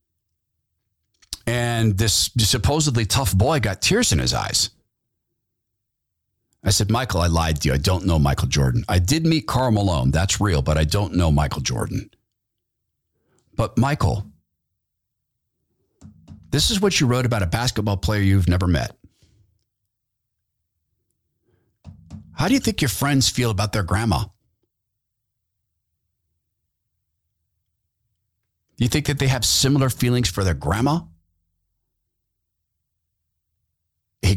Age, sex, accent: 40-59, male, American